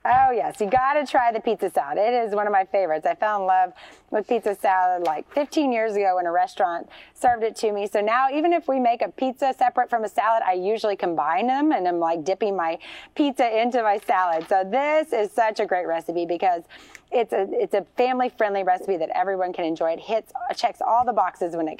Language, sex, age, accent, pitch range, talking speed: English, female, 30-49, American, 185-250 Hz, 230 wpm